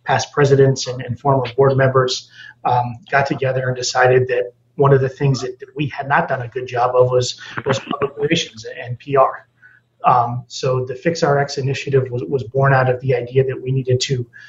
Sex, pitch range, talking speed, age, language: male, 125-140 Hz, 200 wpm, 30-49, English